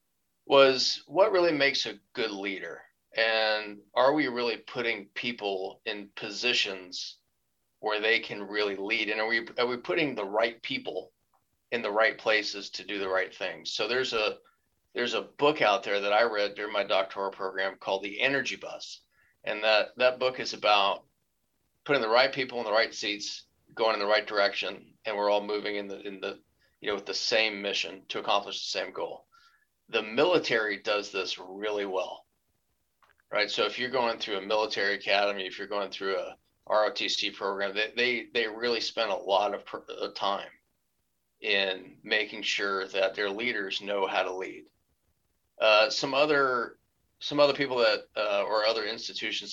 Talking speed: 180 wpm